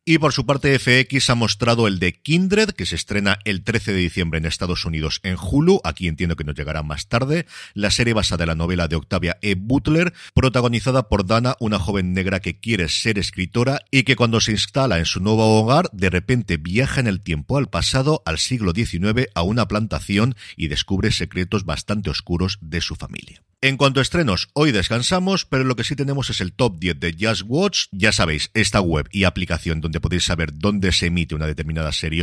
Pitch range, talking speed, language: 85-130 Hz, 210 wpm, Spanish